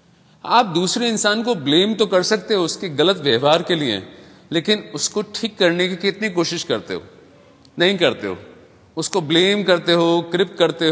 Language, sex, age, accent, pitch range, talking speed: English, male, 40-59, Indian, 155-200 Hz, 175 wpm